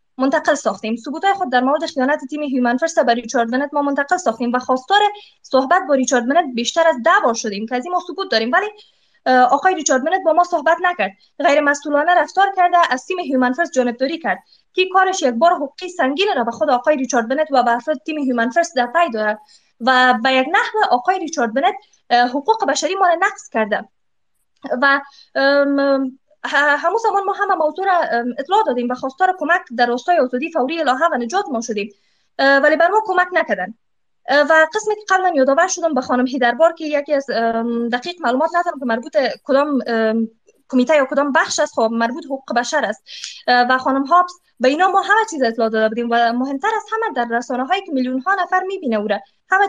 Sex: female